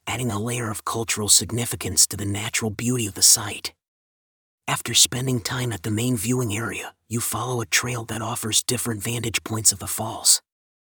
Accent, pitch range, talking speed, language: American, 105-120 Hz, 185 wpm, English